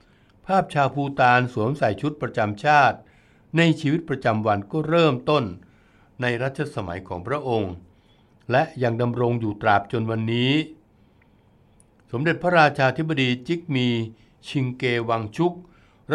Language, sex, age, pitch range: Thai, male, 60-79, 110-140 Hz